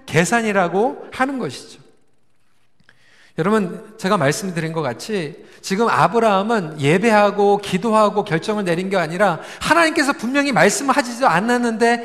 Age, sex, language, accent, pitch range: 40-59, male, Korean, native, 175-255 Hz